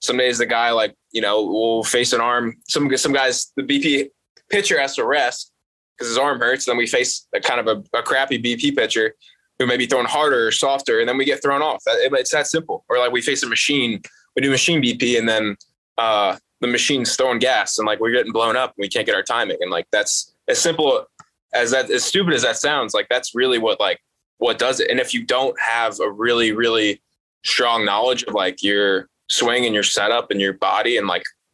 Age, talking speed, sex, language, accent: 20-39, 235 wpm, male, English, American